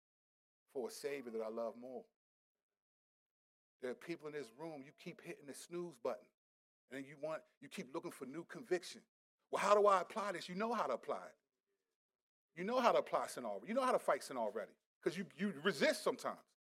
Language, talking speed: English, 210 wpm